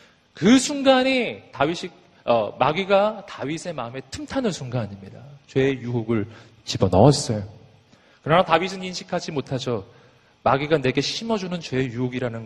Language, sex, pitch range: Korean, male, 115-165 Hz